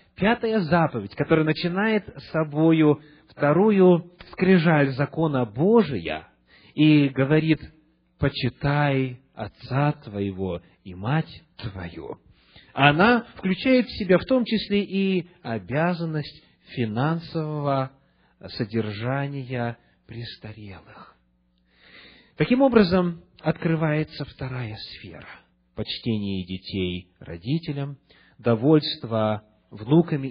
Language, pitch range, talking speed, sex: English, 105-160 Hz, 80 wpm, male